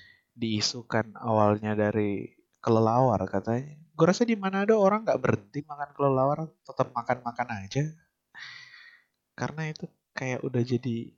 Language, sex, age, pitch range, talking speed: Indonesian, male, 30-49, 115-150 Hz, 120 wpm